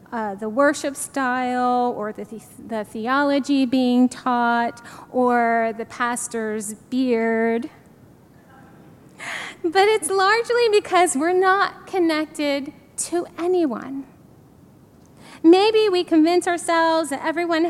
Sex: female